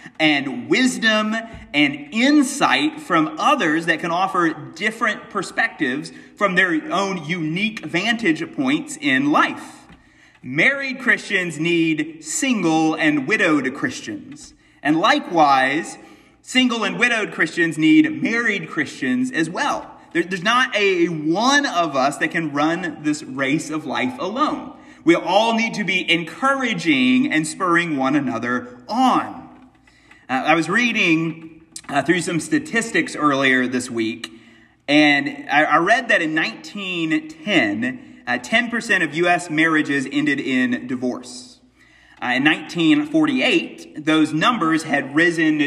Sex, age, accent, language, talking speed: male, 30-49, American, English, 125 wpm